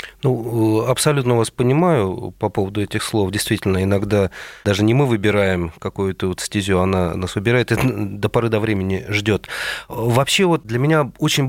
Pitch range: 100-130 Hz